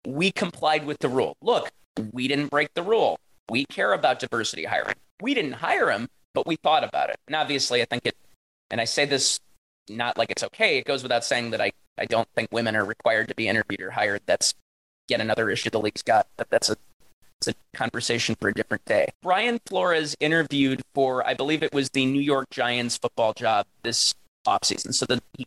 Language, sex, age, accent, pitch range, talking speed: English, male, 30-49, American, 125-165 Hz, 210 wpm